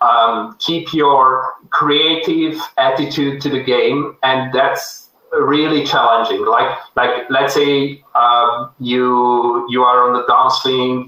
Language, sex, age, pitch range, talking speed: English, male, 30-49, 125-145 Hz, 125 wpm